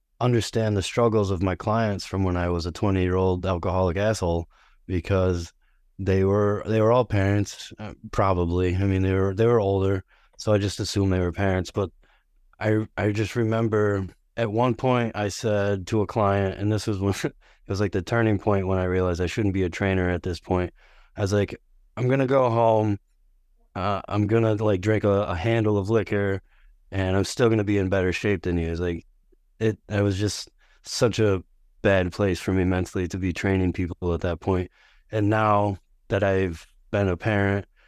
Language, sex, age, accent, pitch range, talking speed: English, male, 20-39, American, 95-110 Hz, 200 wpm